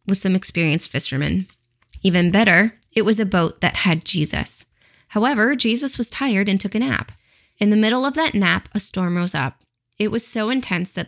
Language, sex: English, female